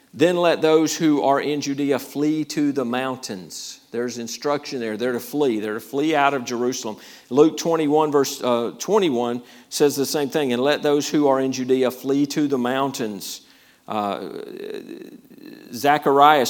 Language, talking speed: English, 165 wpm